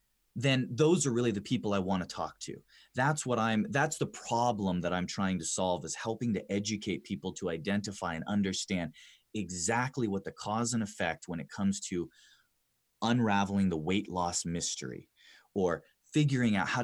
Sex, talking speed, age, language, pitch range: male, 180 wpm, 30-49, English, 90-120 Hz